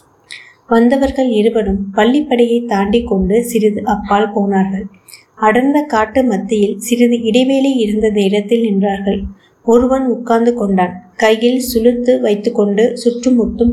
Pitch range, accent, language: 215-250 Hz, native, Tamil